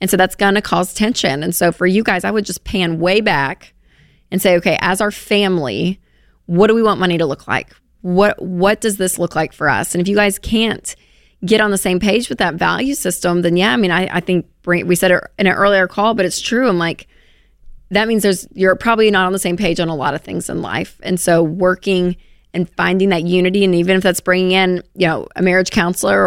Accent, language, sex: American, English, female